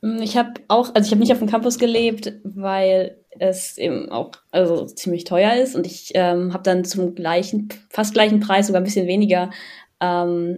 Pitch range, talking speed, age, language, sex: 185-220 Hz, 195 wpm, 10-29, German, female